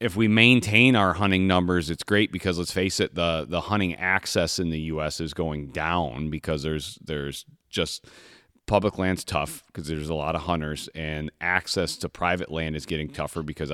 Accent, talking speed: American, 195 wpm